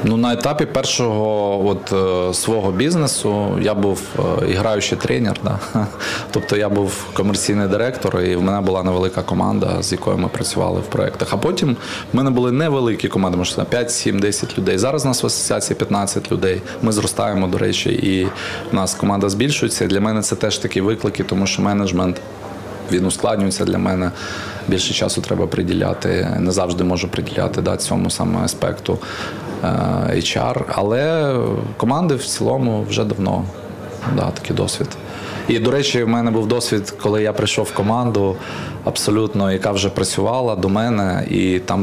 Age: 20-39